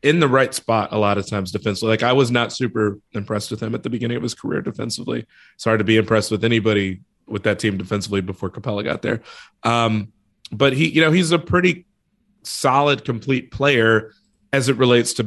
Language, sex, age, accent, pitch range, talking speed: English, male, 30-49, American, 110-135 Hz, 210 wpm